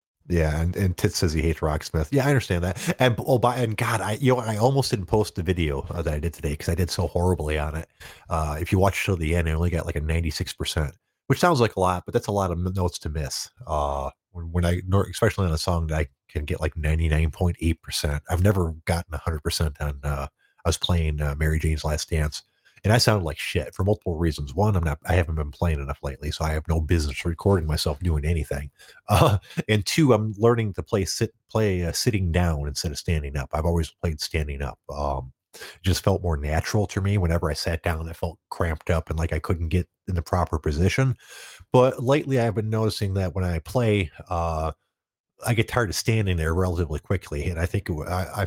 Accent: American